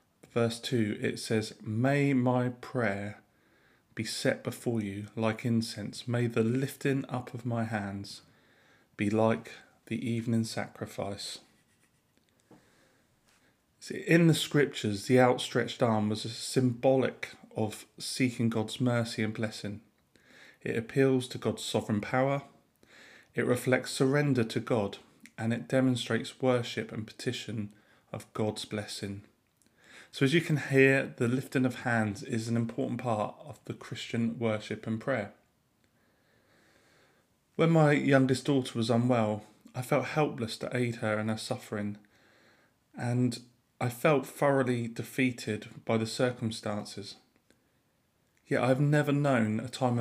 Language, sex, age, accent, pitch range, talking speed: English, male, 30-49, British, 110-130 Hz, 130 wpm